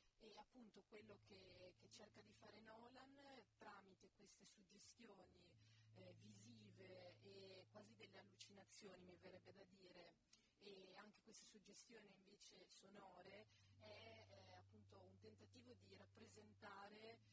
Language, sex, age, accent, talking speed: Italian, female, 30-49, native, 120 wpm